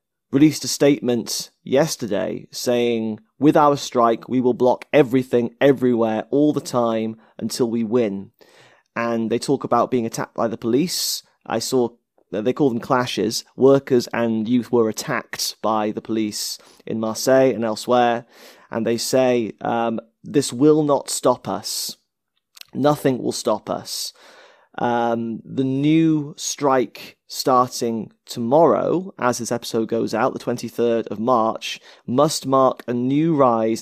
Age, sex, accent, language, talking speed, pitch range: 30-49, male, British, English, 140 wpm, 115-135 Hz